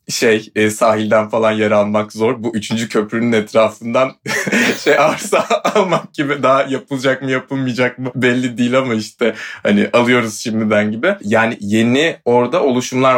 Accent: native